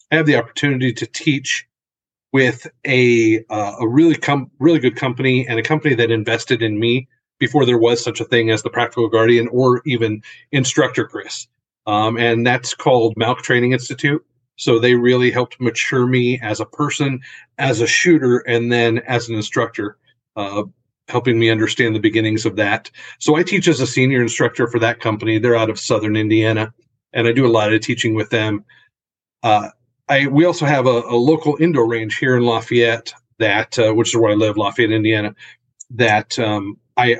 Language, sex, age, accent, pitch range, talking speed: English, male, 40-59, American, 115-130 Hz, 190 wpm